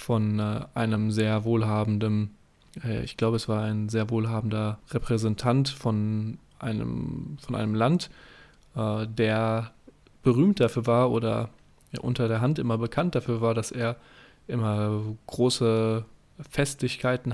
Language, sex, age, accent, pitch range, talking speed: German, male, 10-29, German, 110-125 Hz, 120 wpm